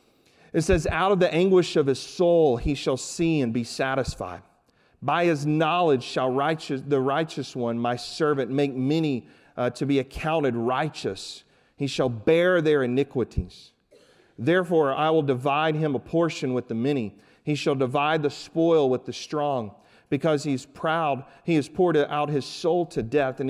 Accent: American